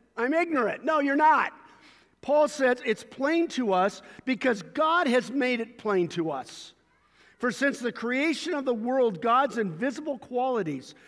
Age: 50-69